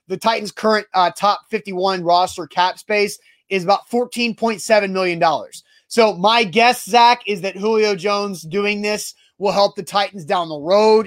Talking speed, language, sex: 165 wpm, English, male